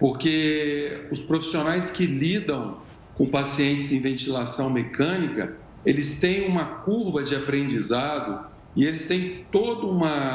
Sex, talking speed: male, 120 wpm